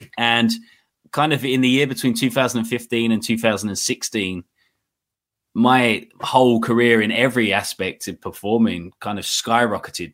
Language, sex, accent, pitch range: English, male, British, 100-115 Hz